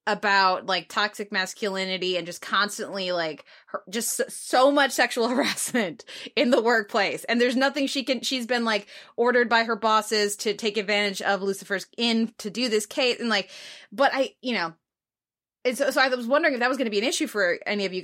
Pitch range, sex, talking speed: 195-245 Hz, female, 210 wpm